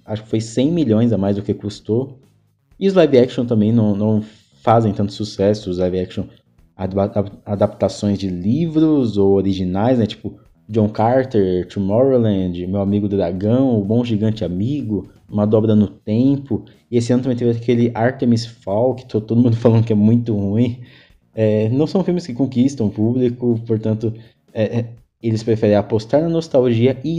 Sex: male